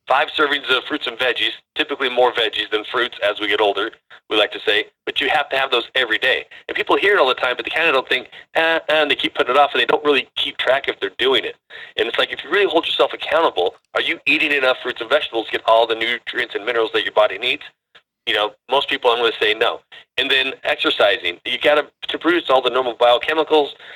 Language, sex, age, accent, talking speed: English, male, 30-49, American, 265 wpm